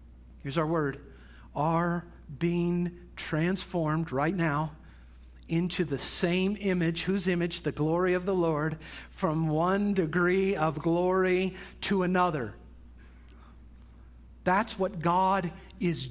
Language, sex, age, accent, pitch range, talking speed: English, male, 50-69, American, 150-215 Hz, 110 wpm